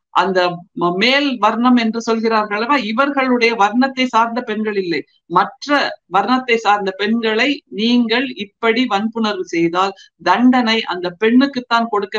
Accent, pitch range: native, 195-255 Hz